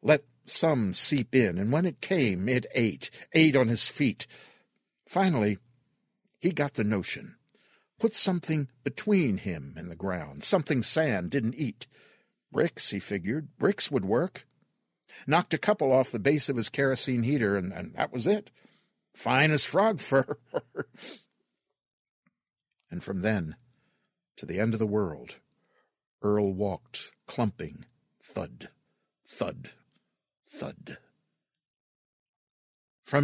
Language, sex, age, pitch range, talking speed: English, male, 60-79, 105-145 Hz, 125 wpm